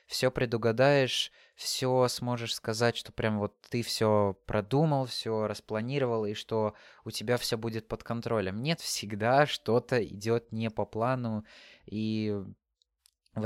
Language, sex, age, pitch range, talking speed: Russian, male, 20-39, 105-120 Hz, 135 wpm